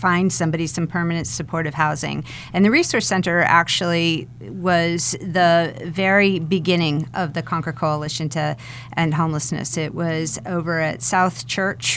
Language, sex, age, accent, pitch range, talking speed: English, female, 40-59, American, 160-195 Hz, 140 wpm